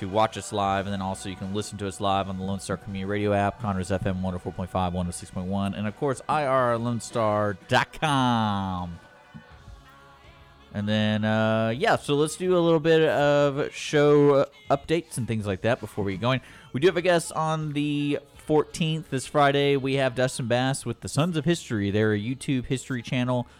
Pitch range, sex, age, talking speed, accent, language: 100-130 Hz, male, 30-49, 180 wpm, American, English